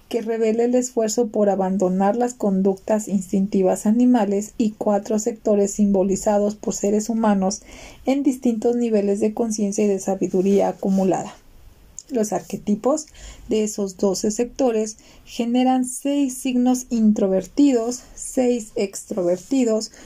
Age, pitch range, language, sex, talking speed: 40-59, 200-245 Hz, Spanish, female, 115 wpm